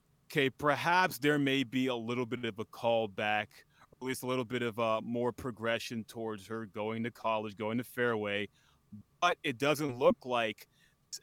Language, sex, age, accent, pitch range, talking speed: English, male, 30-49, American, 110-135 Hz, 180 wpm